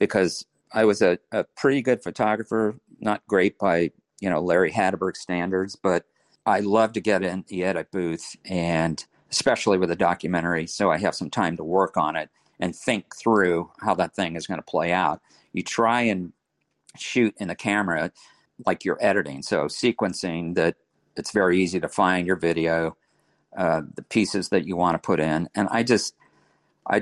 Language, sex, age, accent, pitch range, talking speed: English, male, 50-69, American, 85-95 Hz, 185 wpm